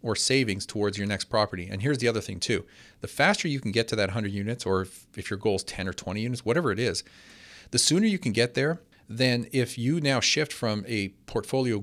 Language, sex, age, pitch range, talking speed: English, male, 40-59, 100-125 Hz, 245 wpm